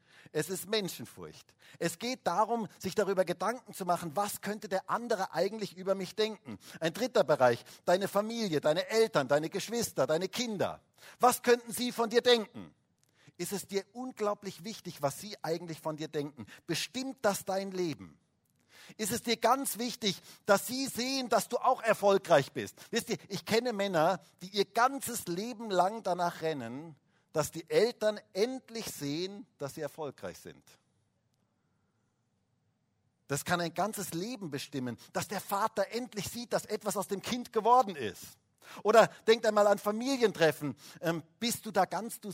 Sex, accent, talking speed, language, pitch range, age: male, German, 160 wpm, German, 160-225 Hz, 50-69